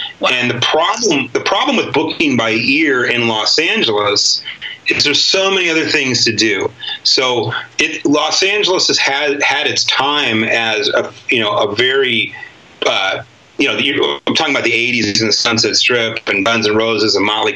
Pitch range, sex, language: 110-125 Hz, male, English